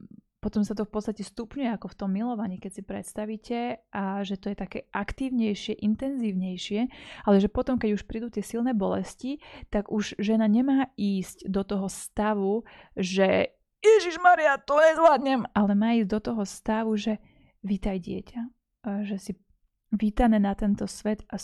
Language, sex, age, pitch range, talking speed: Slovak, female, 30-49, 200-230 Hz, 160 wpm